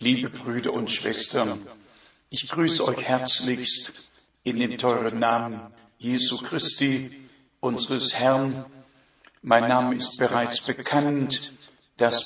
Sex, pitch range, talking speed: male, 125-145 Hz, 110 wpm